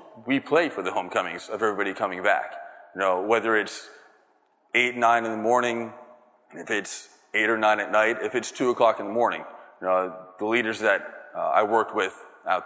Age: 30-49